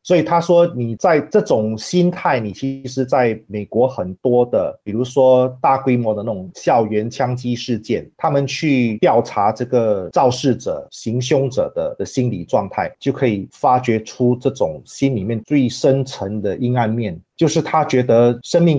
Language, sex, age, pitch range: Chinese, male, 30-49, 110-140 Hz